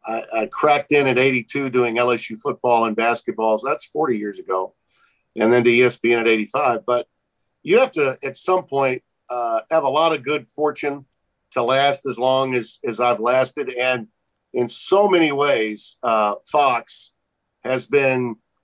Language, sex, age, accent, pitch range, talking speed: English, male, 50-69, American, 120-155 Hz, 165 wpm